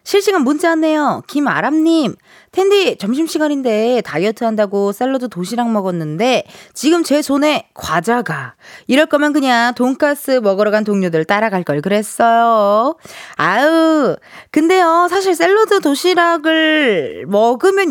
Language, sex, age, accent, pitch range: Korean, female, 20-39, native, 205-310 Hz